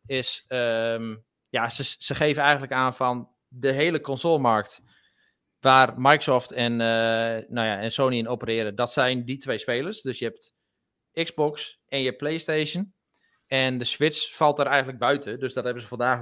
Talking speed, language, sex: 175 wpm, Dutch, male